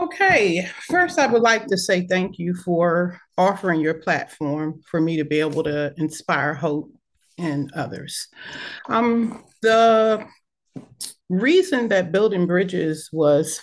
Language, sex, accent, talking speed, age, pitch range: English, female, American, 135 wpm, 40-59, 155-205 Hz